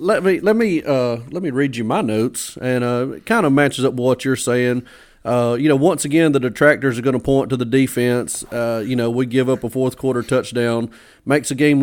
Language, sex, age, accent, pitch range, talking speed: English, male, 30-49, American, 120-145 Hz, 245 wpm